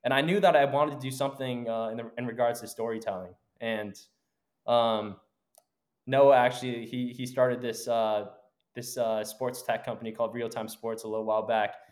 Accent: American